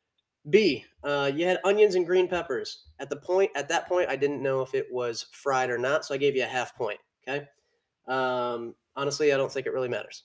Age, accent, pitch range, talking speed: 20-39, American, 115-165 Hz, 230 wpm